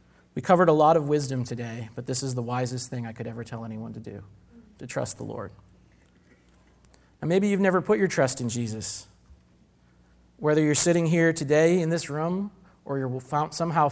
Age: 30-49